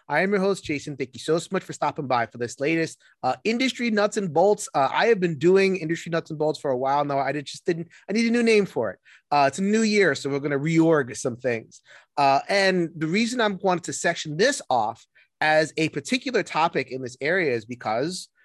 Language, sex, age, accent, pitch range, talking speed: English, male, 30-49, American, 130-180 Hz, 245 wpm